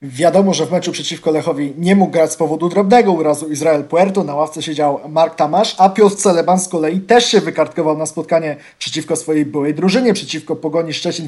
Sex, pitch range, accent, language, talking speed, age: male, 160-195 Hz, native, Polish, 195 wpm, 20-39